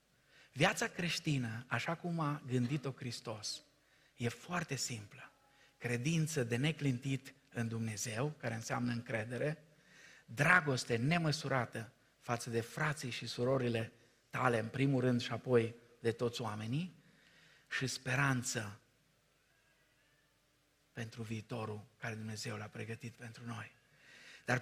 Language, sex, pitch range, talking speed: Romanian, male, 120-165 Hz, 110 wpm